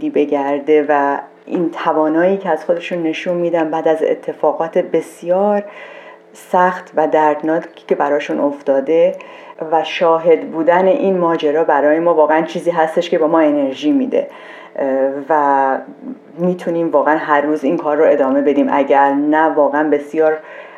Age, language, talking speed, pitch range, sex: 40-59, Persian, 140 wpm, 145-175 Hz, female